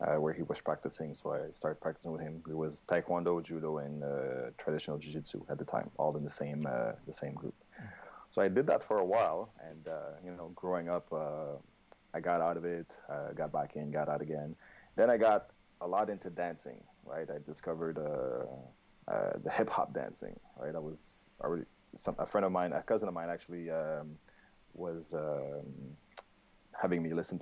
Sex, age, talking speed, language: male, 30-49, 205 wpm, English